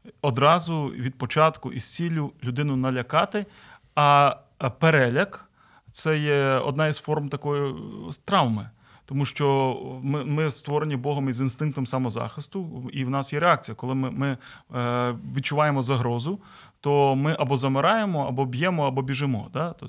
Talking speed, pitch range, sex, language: 135 wpm, 130-165 Hz, male, Ukrainian